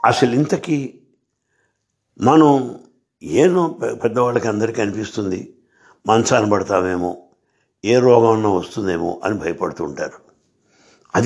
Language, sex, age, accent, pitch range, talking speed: English, male, 60-79, Indian, 100-145 Hz, 90 wpm